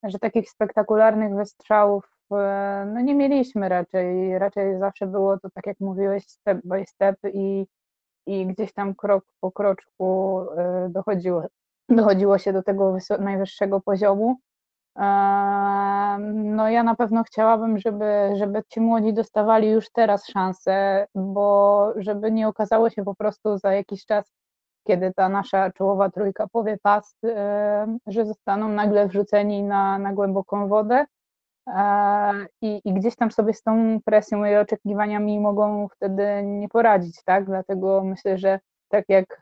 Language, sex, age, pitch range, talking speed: Polish, female, 20-39, 195-215 Hz, 140 wpm